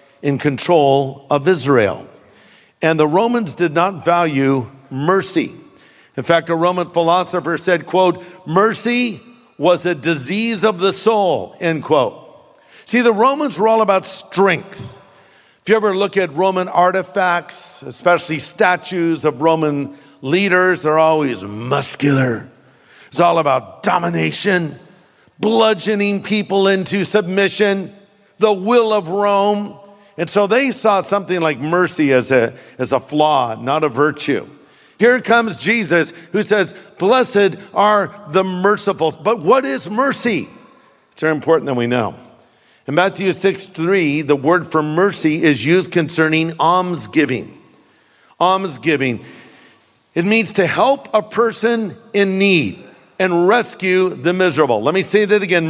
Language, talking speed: English, 135 wpm